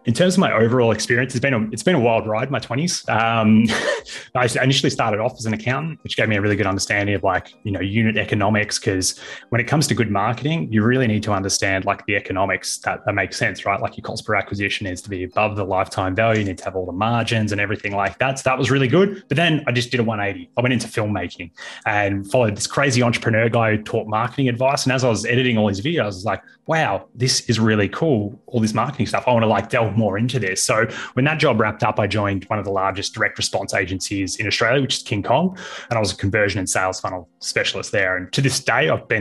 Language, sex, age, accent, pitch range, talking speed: English, male, 20-39, Australian, 100-125 Hz, 260 wpm